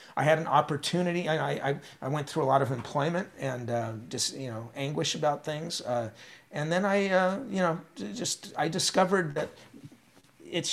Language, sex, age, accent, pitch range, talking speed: English, male, 40-59, American, 135-165 Hz, 190 wpm